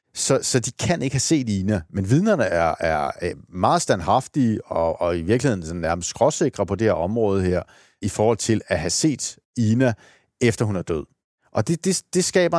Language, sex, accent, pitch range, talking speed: Danish, male, native, 100-130 Hz, 195 wpm